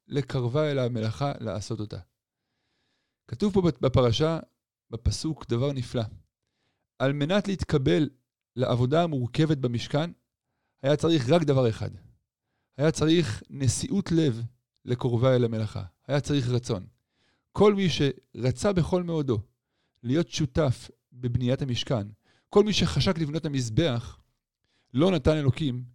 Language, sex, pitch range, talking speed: Hebrew, male, 120-155 Hz, 115 wpm